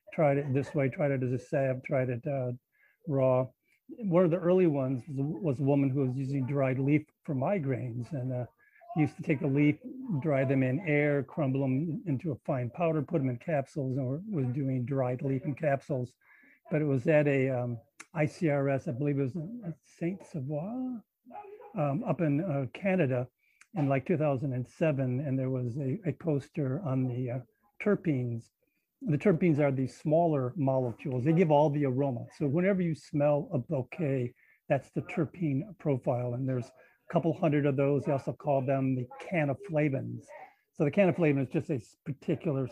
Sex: male